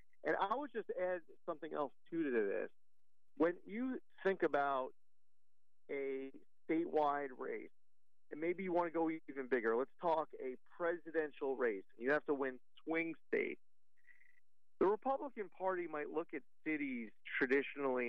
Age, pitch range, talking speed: 40-59, 130-180 Hz, 145 wpm